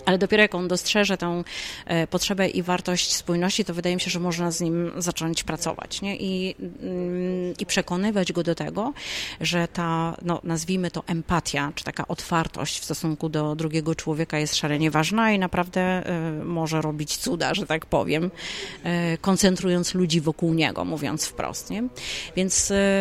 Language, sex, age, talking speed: Polish, female, 30-49, 155 wpm